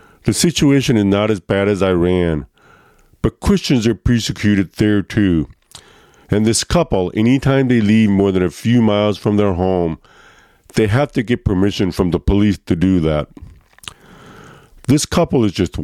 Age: 50-69